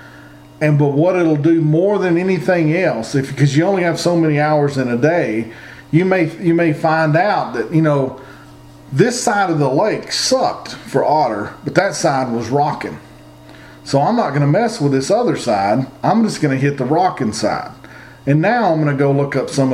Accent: American